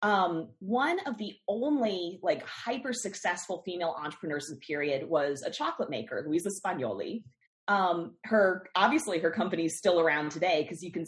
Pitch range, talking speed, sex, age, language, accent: 150-195 Hz, 180 wpm, female, 30-49, English, American